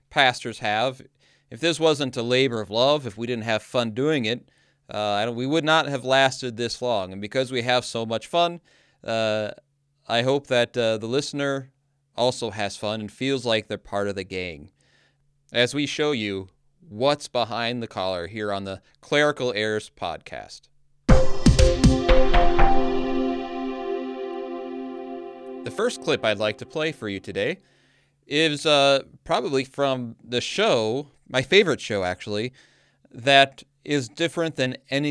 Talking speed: 150 wpm